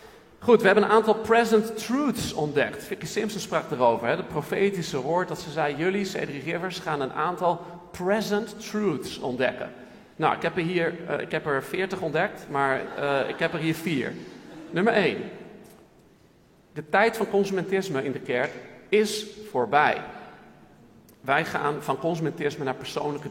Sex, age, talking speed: male, 50-69, 155 wpm